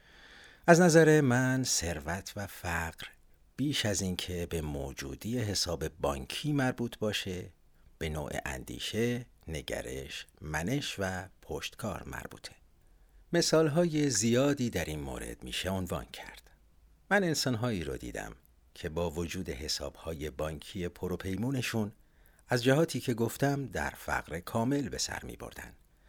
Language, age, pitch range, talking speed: Persian, 50-69, 80-120 Hz, 120 wpm